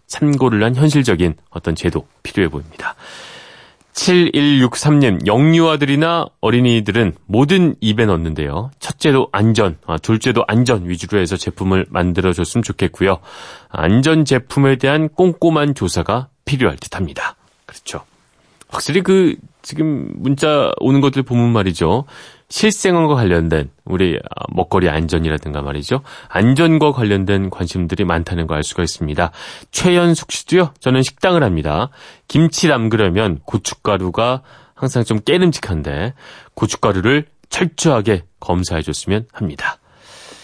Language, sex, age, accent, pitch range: Korean, male, 30-49, native, 90-145 Hz